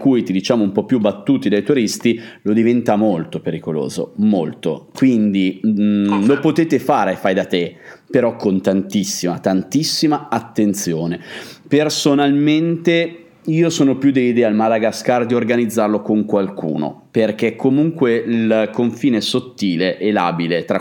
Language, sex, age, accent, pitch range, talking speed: Italian, male, 30-49, native, 100-125 Hz, 135 wpm